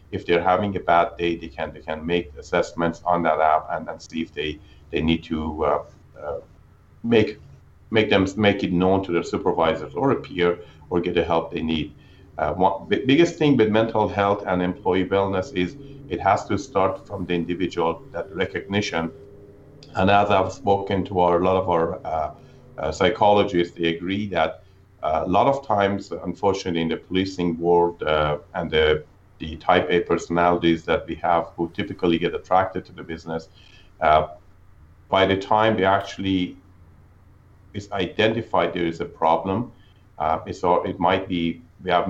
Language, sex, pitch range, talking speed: English, male, 85-100 Hz, 180 wpm